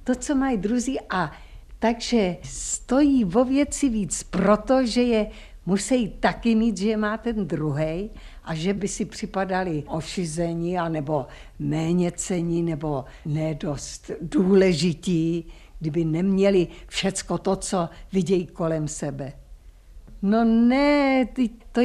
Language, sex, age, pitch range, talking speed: Czech, female, 60-79, 145-205 Hz, 115 wpm